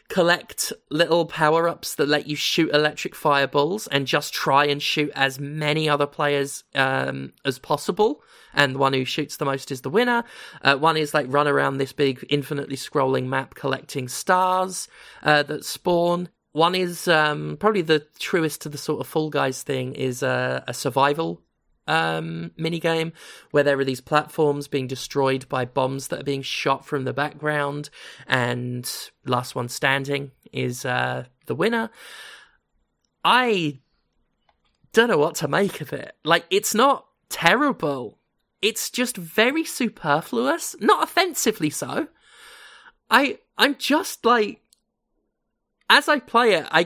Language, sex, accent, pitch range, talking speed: English, male, British, 135-185 Hz, 150 wpm